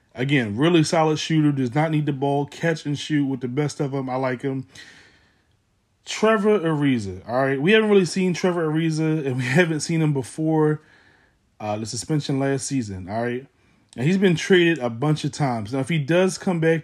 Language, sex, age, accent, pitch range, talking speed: English, male, 20-39, American, 130-165 Hz, 205 wpm